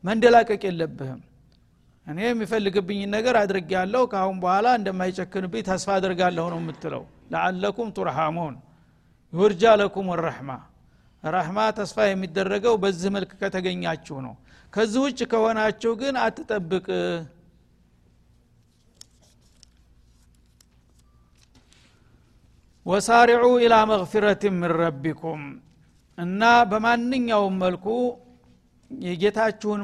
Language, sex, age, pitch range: Amharic, male, 60-79, 160-215 Hz